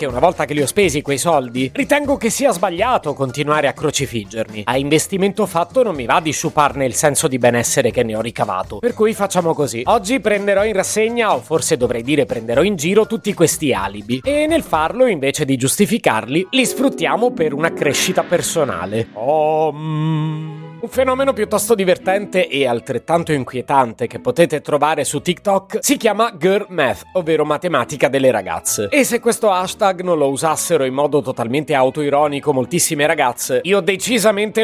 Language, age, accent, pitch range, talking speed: Italian, 30-49, native, 140-205 Hz, 170 wpm